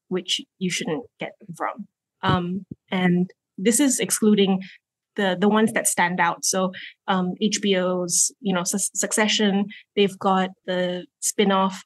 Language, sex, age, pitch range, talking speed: English, female, 20-39, 180-205 Hz, 140 wpm